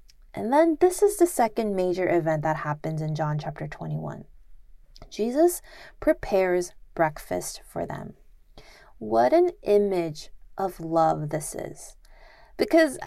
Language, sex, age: English, female, 20-39